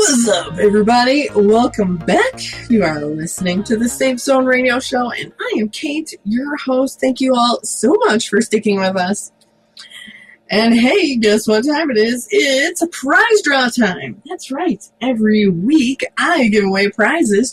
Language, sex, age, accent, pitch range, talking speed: English, female, 20-39, American, 200-260 Hz, 165 wpm